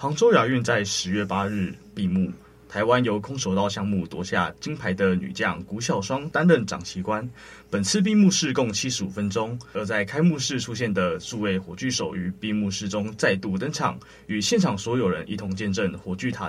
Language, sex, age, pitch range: Chinese, male, 20-39, 95-125 Hz